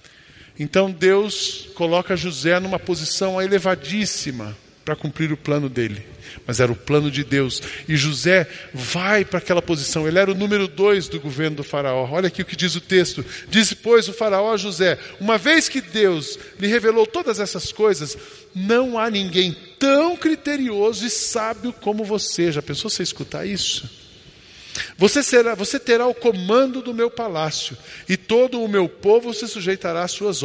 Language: Portuguese